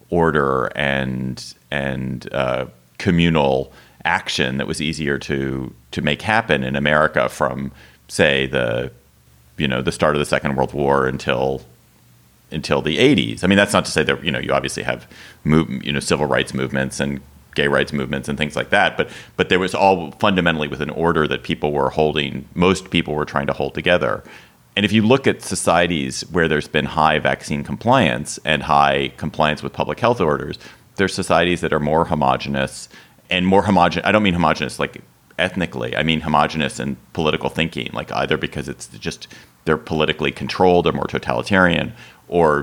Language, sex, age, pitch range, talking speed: English, male, 30-49, 65-80 Hz, 180 wpm